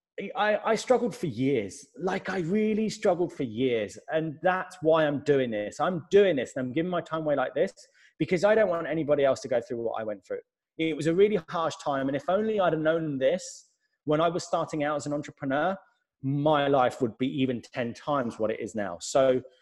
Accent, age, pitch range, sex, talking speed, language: British, 20-39, 145-190 Hz, male, 225 wpm, English